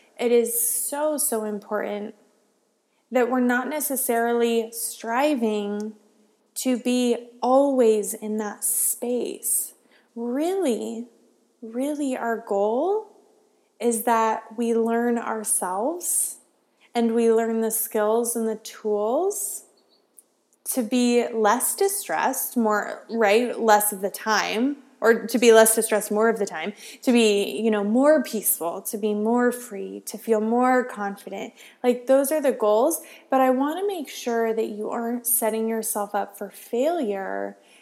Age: 20-39